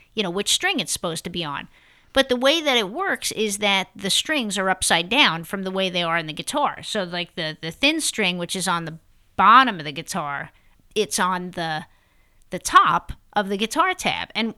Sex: female